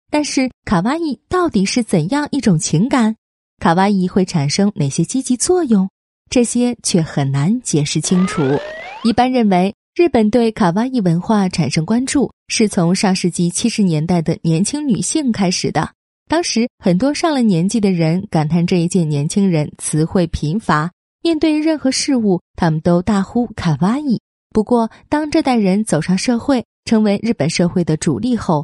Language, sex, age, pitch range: Chinese, female, 20-39, 155-230 Hz